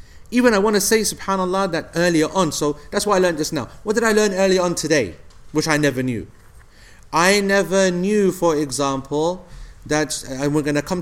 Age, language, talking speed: 30-49, English, 205 wpm